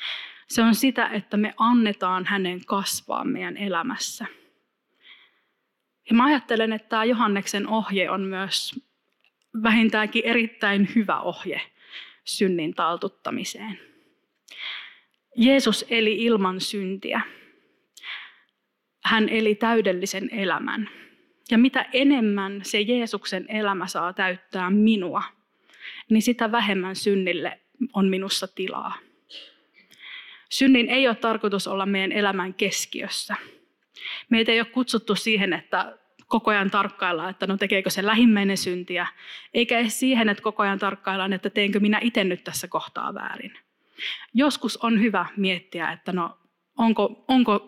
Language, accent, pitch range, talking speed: Finnish, native, 190-230 Hz, 120 wpm